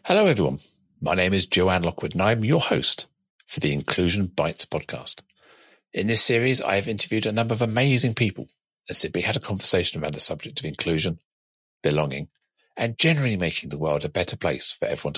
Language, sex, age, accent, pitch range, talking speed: English, male, 50-69, British, 80-115 Hz, 190 wpm